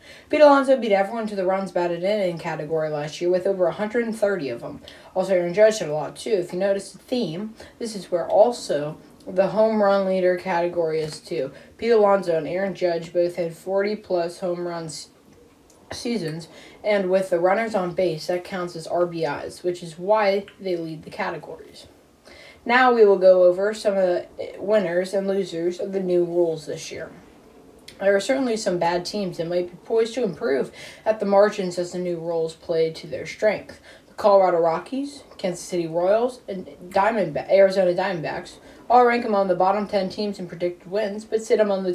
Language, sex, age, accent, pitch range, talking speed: English, female, 20-39, American, 175-205 Hz, 190 wpm